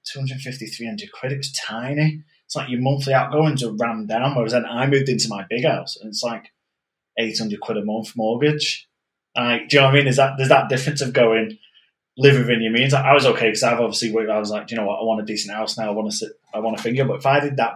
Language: English